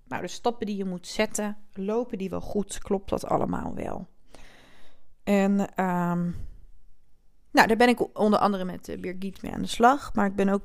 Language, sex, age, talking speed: Dutch, female, 20-39, 185 wpm